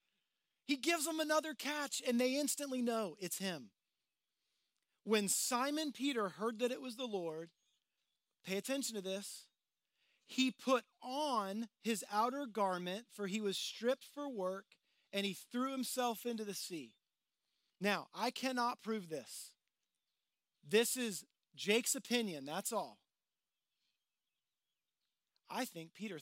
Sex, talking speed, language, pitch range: male, 130 wpm, English, 195-260 Hz